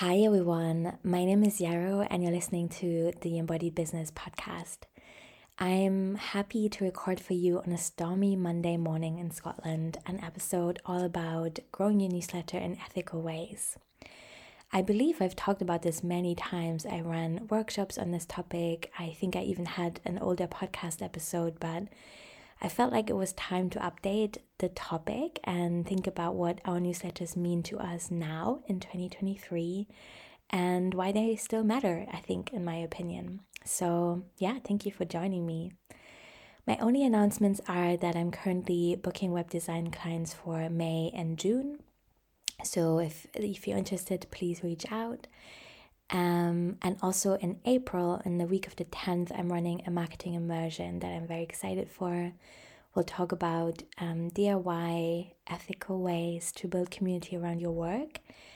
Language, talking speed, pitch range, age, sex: English, 160 wpm, 170-195 Hz, 20-39, female